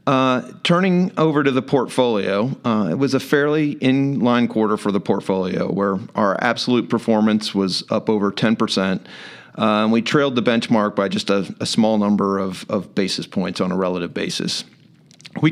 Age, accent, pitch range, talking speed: 40-59, American, 100-130 Hz, 175 wpm